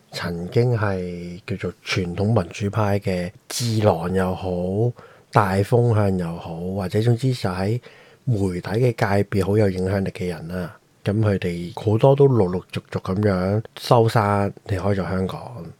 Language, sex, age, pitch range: Chinese, male, 20-39, 90-120 Hz